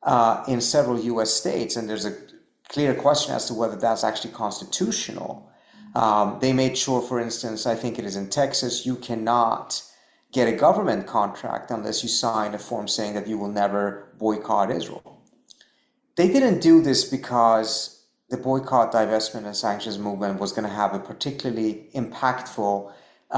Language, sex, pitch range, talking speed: English, male, 110-125 Hz, 165 wpm